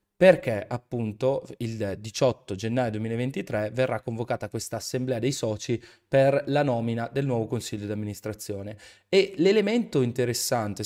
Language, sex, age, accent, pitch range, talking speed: Italian, male, 20-39, native, 110-130 Hz, 125 wpm